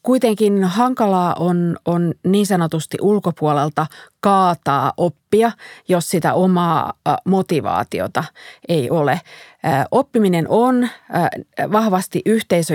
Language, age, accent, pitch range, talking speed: Finnish, 30-49, native, 160-205 Hz, 90 wpm